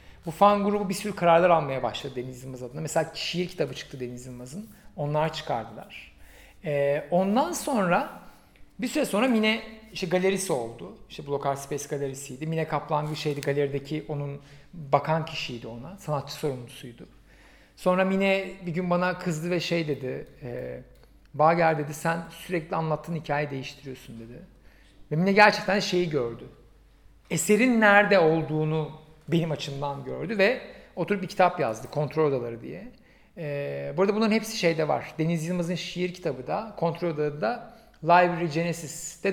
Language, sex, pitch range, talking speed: Turkish, male, 145-185 Hz, 150 wpm